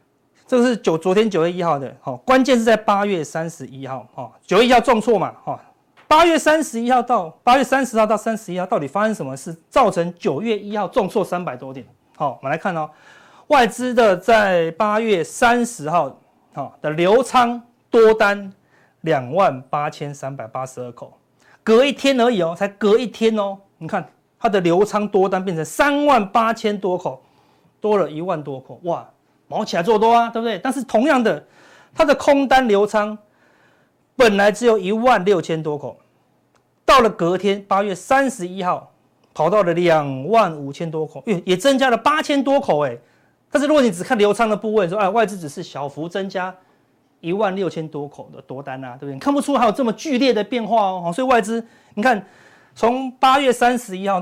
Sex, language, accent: male, Chinese, native